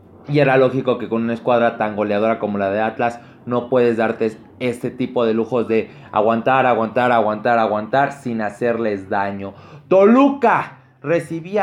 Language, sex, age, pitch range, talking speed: Spanish, male, 30-49, 120-155 Hz, 155 wpm